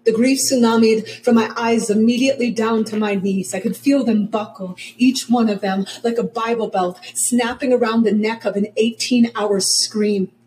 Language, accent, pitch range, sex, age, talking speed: English, American, 210-245 Hz, female, 30-49, 185 wpm